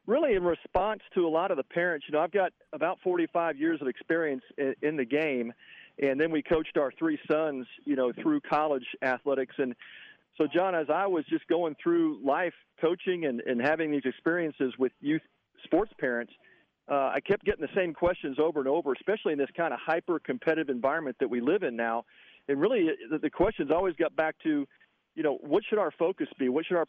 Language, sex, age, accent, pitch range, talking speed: English, male, 40-59, American, 130-165 Hz, 210 wpm